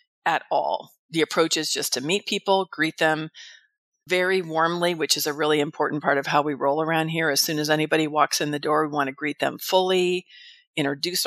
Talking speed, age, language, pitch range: 215 wpm, 40-59, English, 150-180 Hz